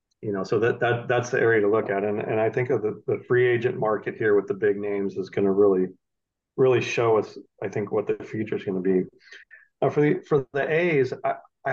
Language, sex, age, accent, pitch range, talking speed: English, male, 40-59, American, 100-125 Hz, 250 wpm